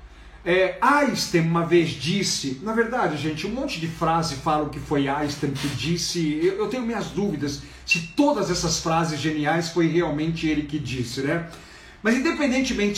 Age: 50-69